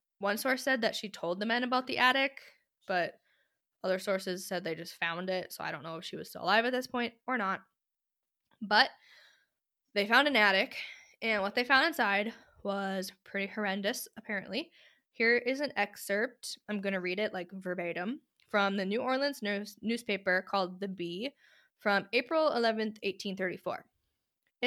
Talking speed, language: 170 wpm, English